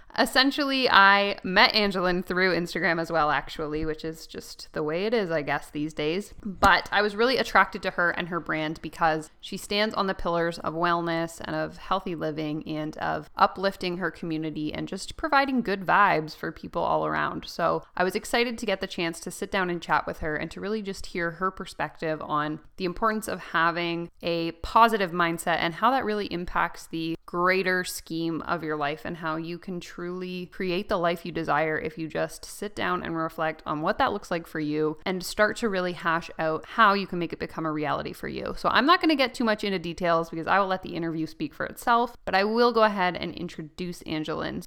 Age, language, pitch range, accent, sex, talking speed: 20-39, English, 165-200 Hz, American, female, 220 wpm